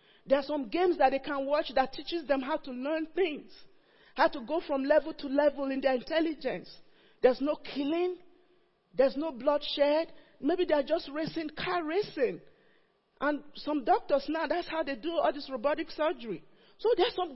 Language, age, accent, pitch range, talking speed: English, 40-59, Nigerian, 275-340 Hz, 180 wpm